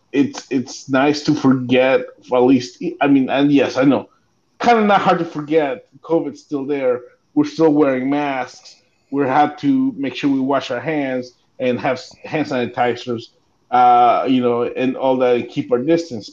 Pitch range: 125-155 Hz